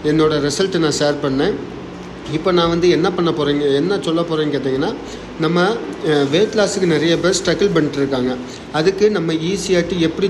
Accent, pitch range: native, 145-175 Hz